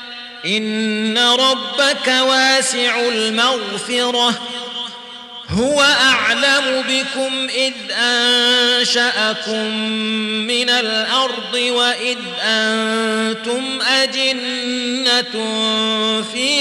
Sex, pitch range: male, 220-245 Hz